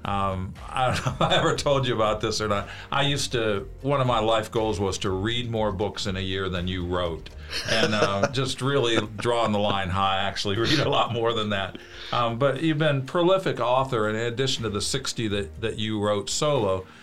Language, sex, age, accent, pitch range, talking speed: English, male, 50-69, American, 100-125 Hz, 225 wpm